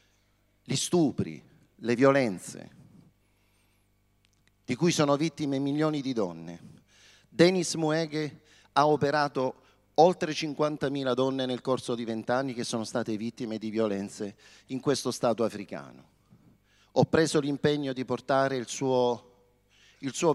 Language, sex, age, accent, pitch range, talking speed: Italian, male, 40-59, native, 110-150 Hz, 120 wpm